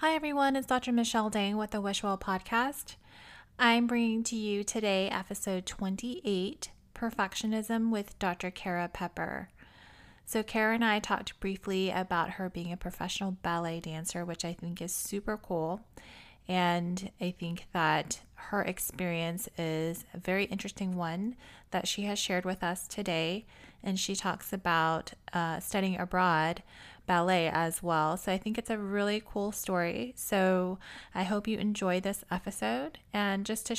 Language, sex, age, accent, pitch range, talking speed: English, female, 20-39, American, 175-205 Hz, 155 wpm